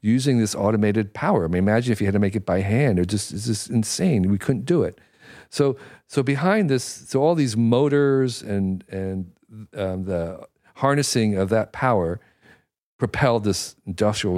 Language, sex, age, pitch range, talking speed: English, male, 50-69, 95-140 Hz, 180 wpm